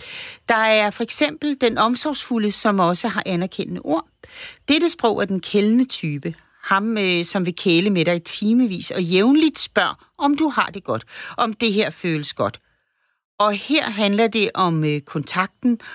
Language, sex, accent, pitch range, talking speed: Danish, female, native, 165-215 Hz, 160 wpm